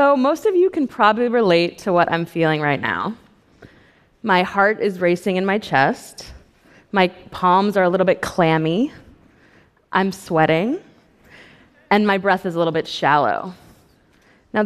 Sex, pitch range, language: female, 175-235 Hz, Russian